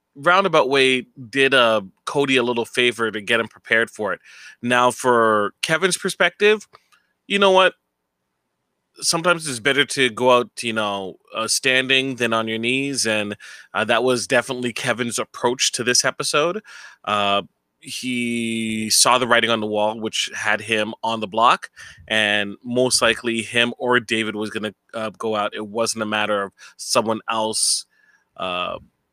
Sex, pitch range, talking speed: male, 110-175 Hz, 165 wpm